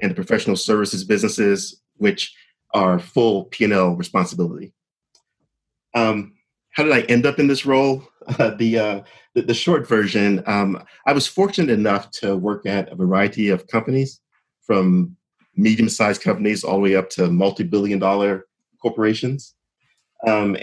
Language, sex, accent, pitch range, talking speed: English, male, American, 95-115 Hz, 150 wpm